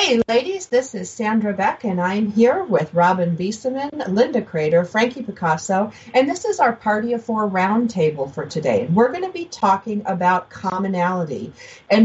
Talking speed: 170 wpm